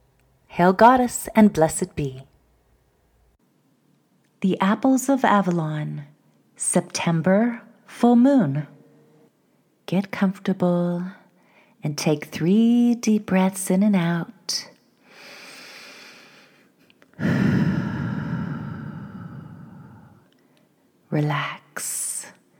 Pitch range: 155-195 Hz